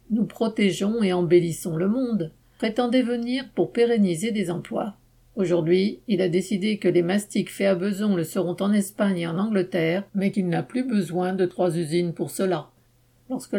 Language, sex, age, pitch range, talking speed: French, female, 50-69, 175-210 Hz, 175 wpm